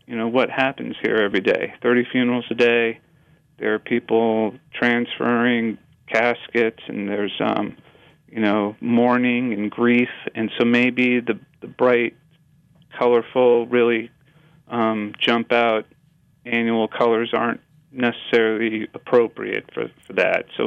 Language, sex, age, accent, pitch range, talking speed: English, male, 40-59, American, 115-130 Hz, 130 wpm